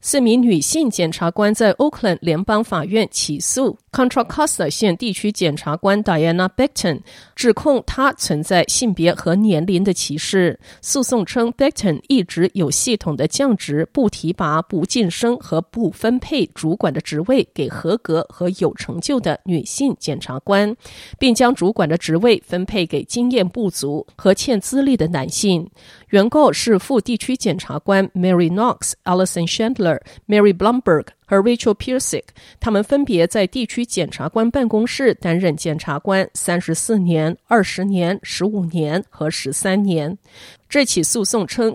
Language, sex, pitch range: Chinese, female, 170-235 Hz